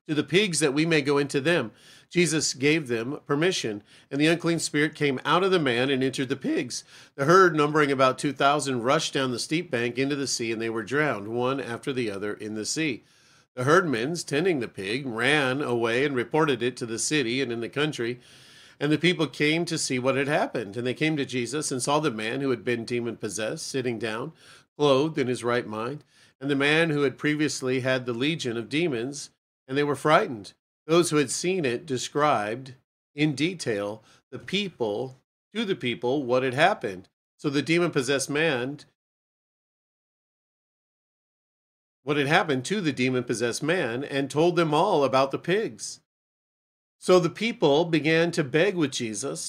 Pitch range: 125-155 Hz